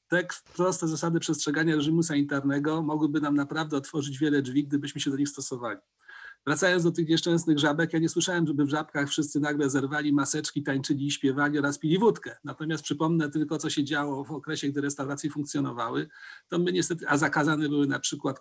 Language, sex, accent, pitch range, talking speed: Polish, male, native, 150-175 Hz, 185 wpm